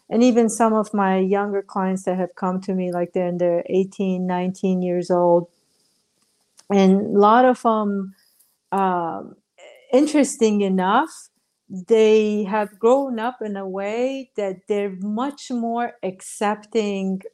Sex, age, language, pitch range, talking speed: female, 50-69, English, 190-225 Hz, 140 wpm